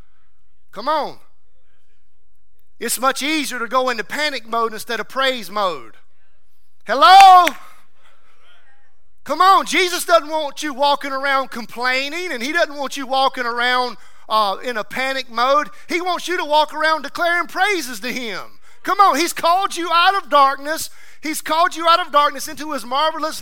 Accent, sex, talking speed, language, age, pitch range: American, male, 160 wpm, English, 30-49, 250-320 Hz